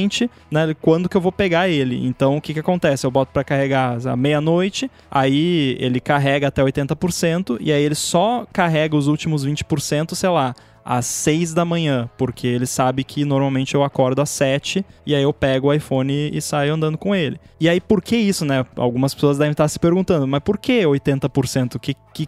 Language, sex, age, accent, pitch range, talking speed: Portuguese, male, 20-39, Brazilian, 135-170 Hz, 210 wpm